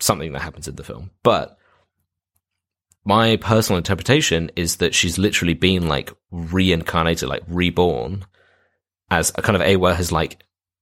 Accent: British